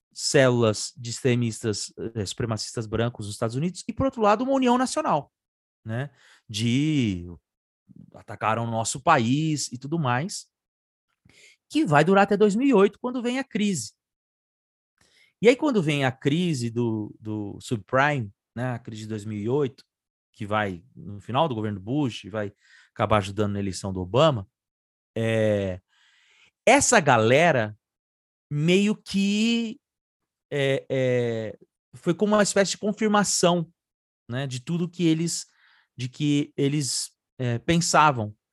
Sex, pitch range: male, 115-180 Hz